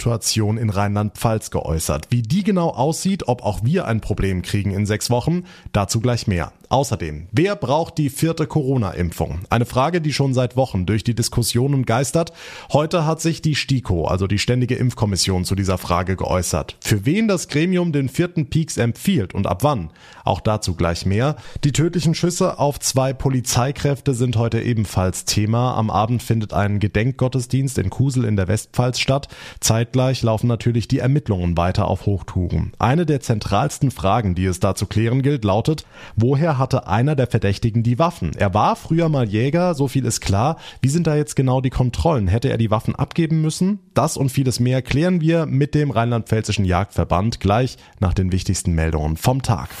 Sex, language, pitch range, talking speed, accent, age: male, German, 100-140 Hz, 180 wpm, German, 30-49